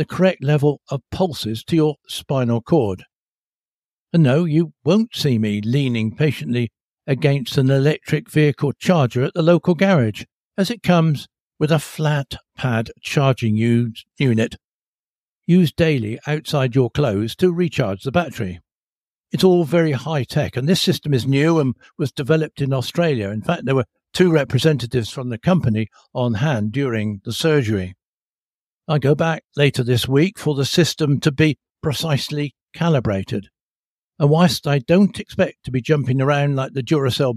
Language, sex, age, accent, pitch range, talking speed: English, male, 60-79, British, 120-155 Hz, 160 wpm